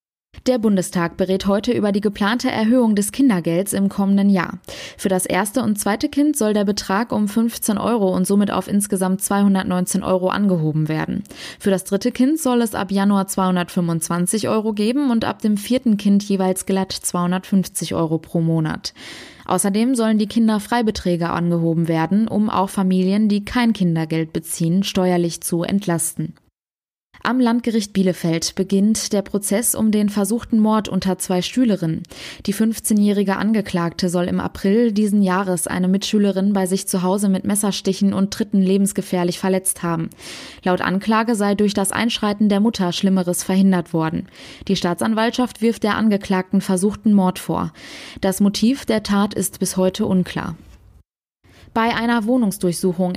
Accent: German